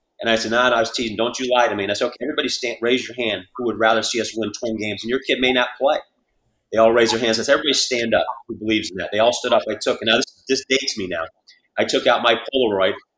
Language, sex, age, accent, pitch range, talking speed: English, male, 30-49, American, 110-125 Hz, 310 wpm